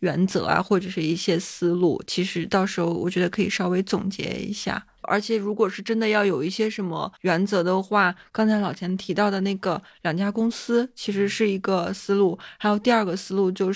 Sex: female